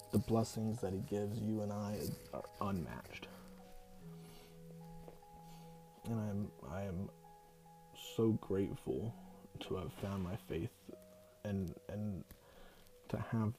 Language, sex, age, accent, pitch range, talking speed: English, male, 20-39, American, 95-115 Hz, 110 wpm